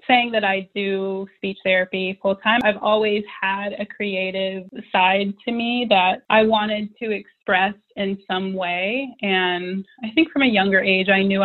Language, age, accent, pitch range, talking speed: English, 20-39, American, 180-205 Hz, 175 wpm